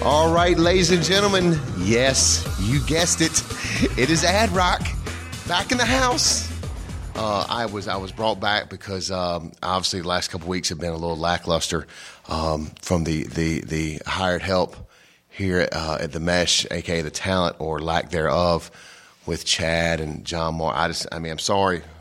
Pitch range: 85-105 Hz